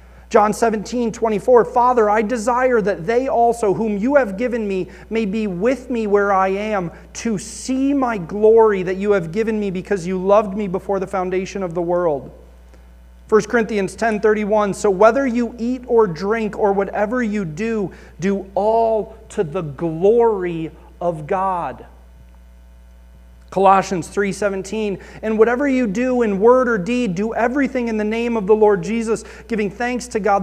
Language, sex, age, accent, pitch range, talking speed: English, male, 30-49, American, 190-235 Hz, 165 wpm